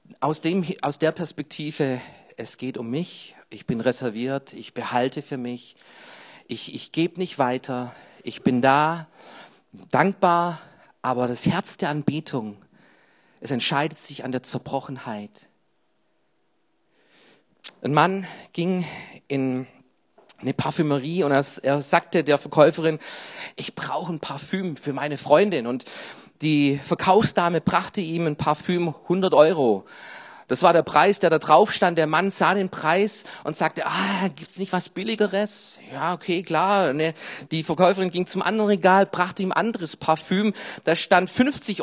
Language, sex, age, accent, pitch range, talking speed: German, male, 40-59, German, 145-195 Hz, 145 wpm